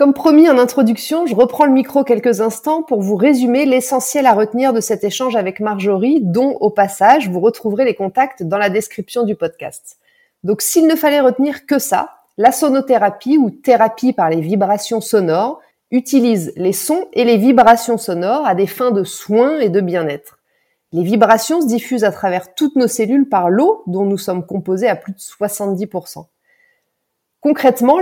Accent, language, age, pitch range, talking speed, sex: French, French, 30-49, 200-265 Hz, 180 wpm, female